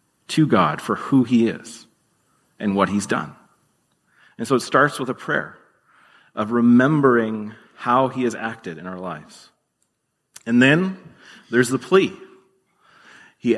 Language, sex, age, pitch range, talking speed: English, male, 30-49, 115-135 Hz, 140 wpm